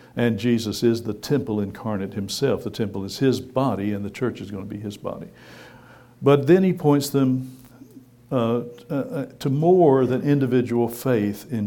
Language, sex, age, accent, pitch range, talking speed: English, male, 60-79, American, 110-130 Hz, 175 wpm